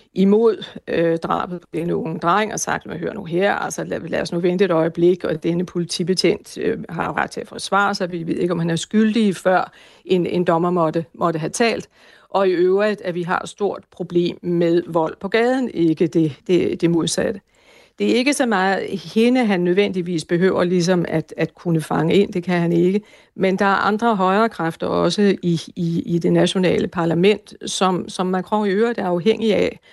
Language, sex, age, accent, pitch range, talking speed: Danish, female, 60-79, native, 170-200 Hz, 210 wpm